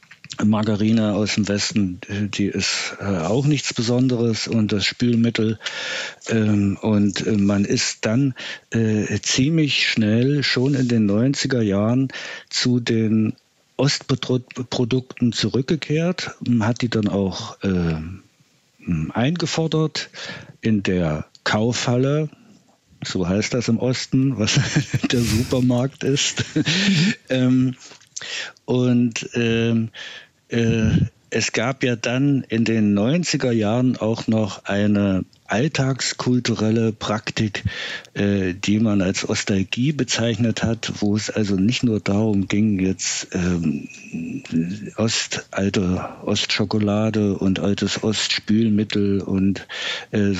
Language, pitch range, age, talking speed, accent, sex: German, 100-125 Hz, 50-69, 100 wpm, German, male